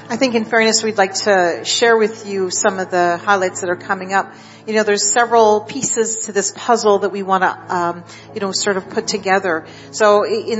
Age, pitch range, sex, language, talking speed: 40-59, 200-235 Hz, female, English, 215 wpm